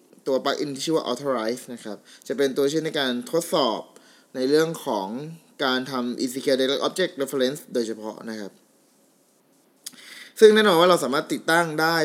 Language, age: Thai, 20-39